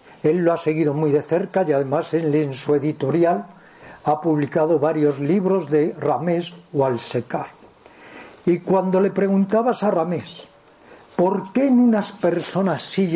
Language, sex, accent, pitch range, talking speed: Spanish, male, Spanish, 155-190 Hz, 145 wpm